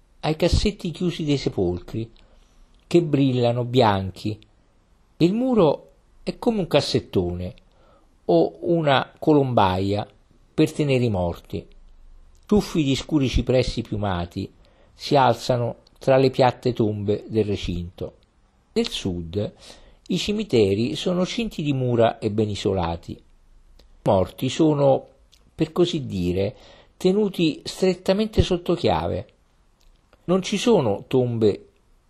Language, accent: Italian, native